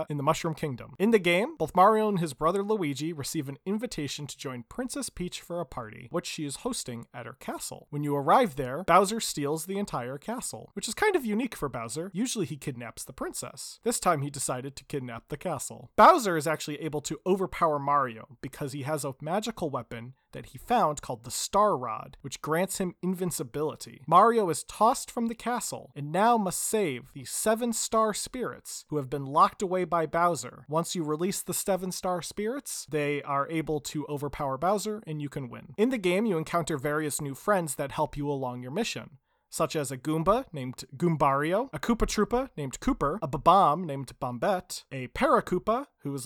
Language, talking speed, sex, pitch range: English, 200 wpm, male, 140-195 Hz